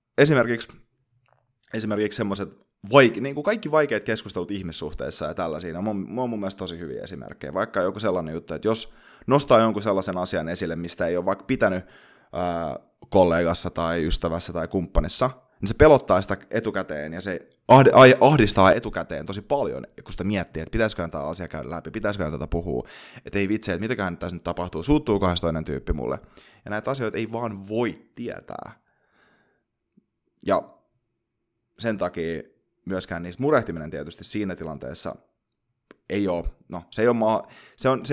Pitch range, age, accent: 85-115 Hz, 20-39, native